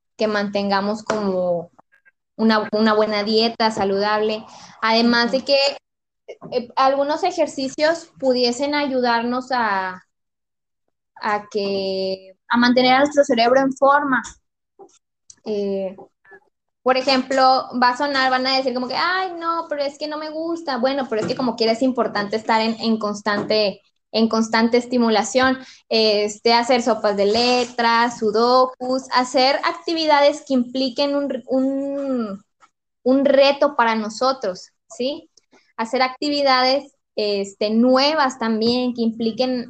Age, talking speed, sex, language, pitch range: 20-39, 125 wpm, female, Spanish, 220-270 Hz